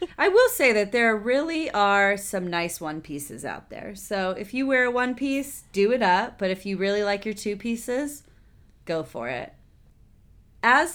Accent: American